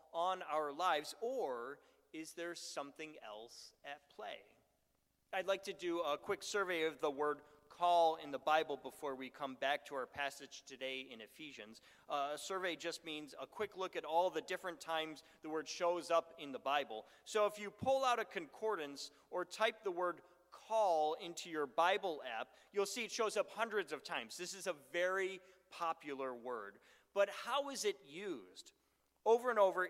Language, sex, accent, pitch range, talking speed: English, male, American, 150-195 Hz, 185 wpm